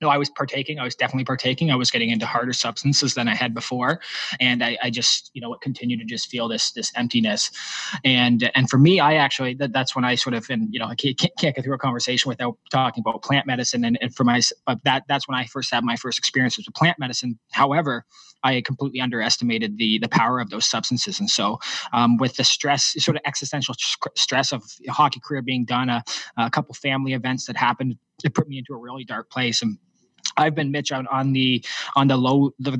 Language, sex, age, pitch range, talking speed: English, male, 20-39, 125-140 Hz, 230 wpm